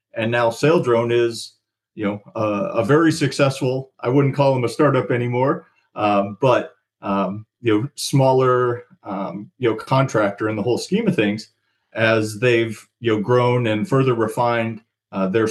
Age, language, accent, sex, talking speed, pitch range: 40-59, English, American, male, 165 wpm, 110-135 Hz